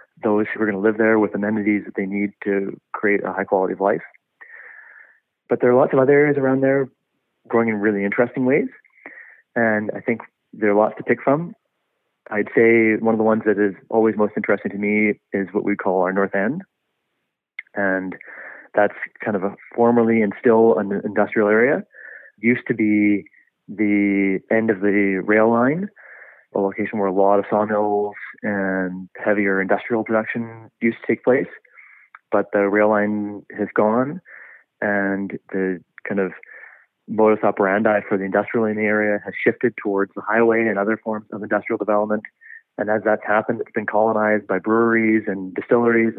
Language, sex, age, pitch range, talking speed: English, male, 30-49, 100-110 Hz, 180 wpm